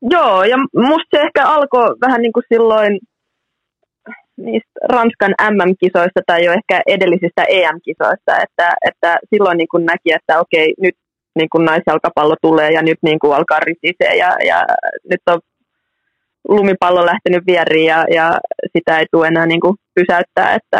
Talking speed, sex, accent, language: 155 wpm, female, native, Finnish